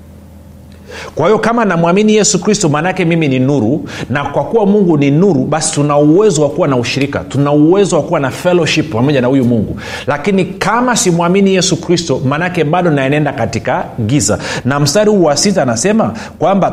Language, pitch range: Swahili, 125-175 Hz